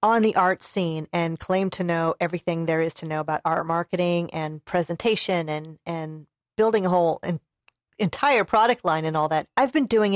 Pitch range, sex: 170-225 Hz, female